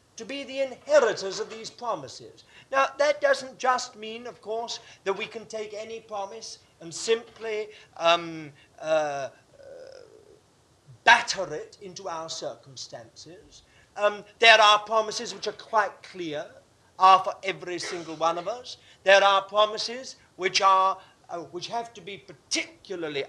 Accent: British